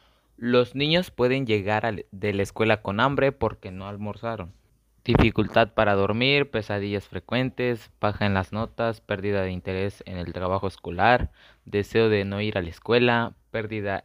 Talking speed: 155 wpm